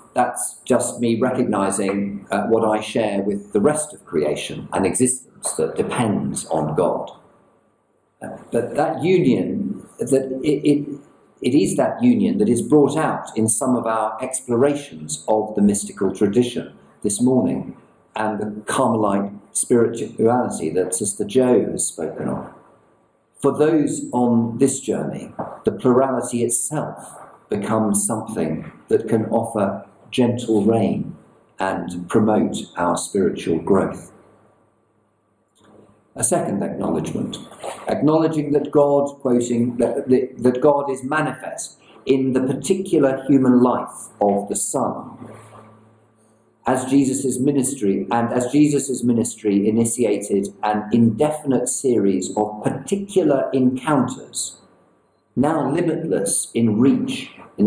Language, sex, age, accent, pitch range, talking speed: English, male, 50-69, British, 105-135 Hz, 120 wpm